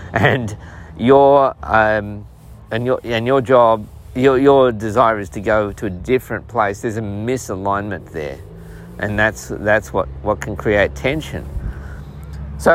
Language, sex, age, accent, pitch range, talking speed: English, male, 50-69, Australian, 90-125 Hz, 145 wpm